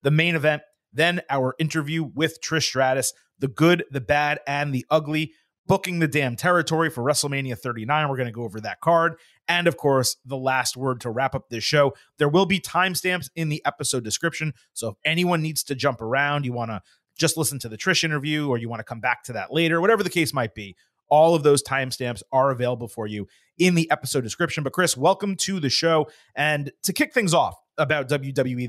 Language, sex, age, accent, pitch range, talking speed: English, male, 30-49, American, 130-170 Hz, 220 wpm